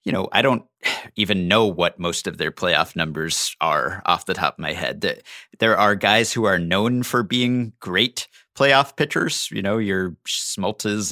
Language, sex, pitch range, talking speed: English, male, 95-120 Hz, 185 wpm